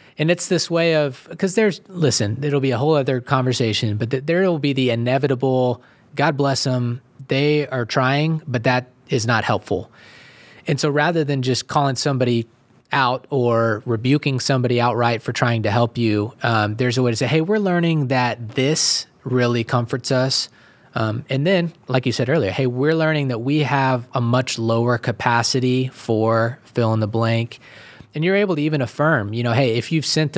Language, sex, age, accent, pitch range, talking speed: English, male, 20-39, American, 120-140 Hz, 190 wpm